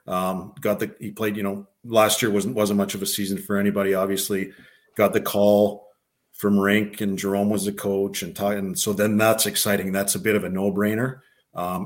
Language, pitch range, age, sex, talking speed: English, 100-115 Hz, 40-59, male, 205 wpm